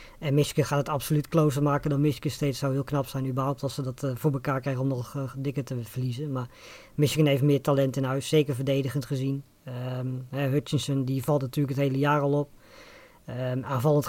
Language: Dutch